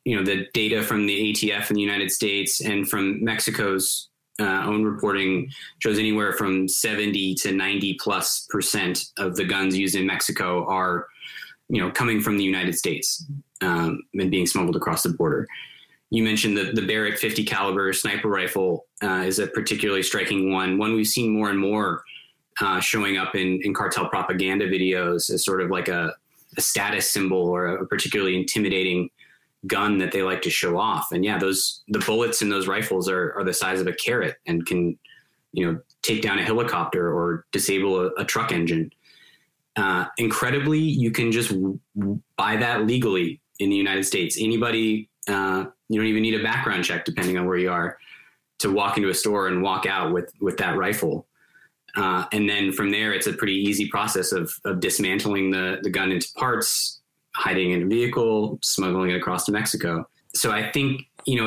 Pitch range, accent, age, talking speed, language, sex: 95-110 Hz, American, 20-39, 190 wpm, Spanish, male